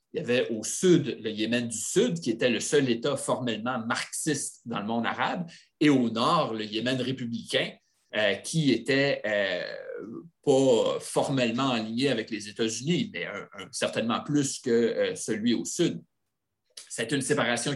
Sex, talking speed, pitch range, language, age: male, 165 wpm, 115-145 Hz, English, 30-49